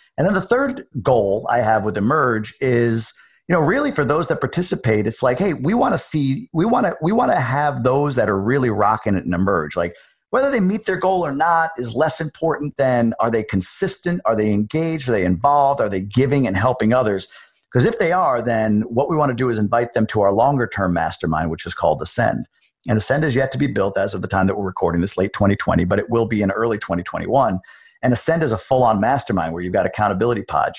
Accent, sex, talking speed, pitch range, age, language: American, male, 240 wpm, 95-130 Hz, 50-69, English